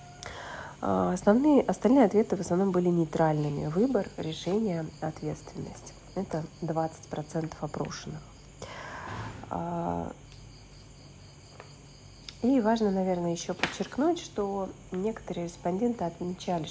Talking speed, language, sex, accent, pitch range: 75 wpm, Russian, female, native, 160-190 Hz